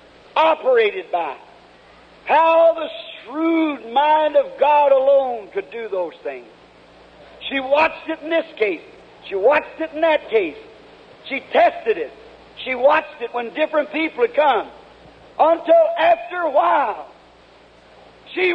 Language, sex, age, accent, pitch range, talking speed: English, male, 50-69, American, 280-335 Hz, 135 wpm